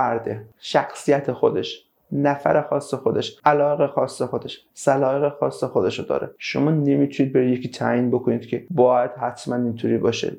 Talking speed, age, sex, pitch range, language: 140 wpm, 30-49, male, 125-165 Hz, Persian